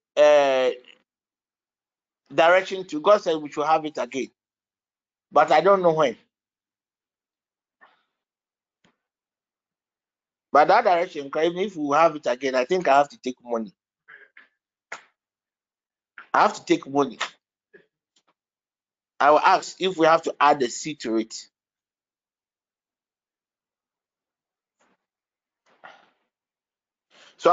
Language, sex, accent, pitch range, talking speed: English, male, Nigerian, 150-210 Hz, 110 wpm